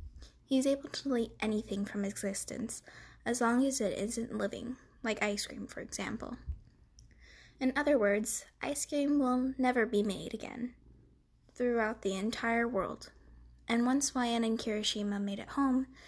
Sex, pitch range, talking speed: female, 200-260 Hz, 150 wpm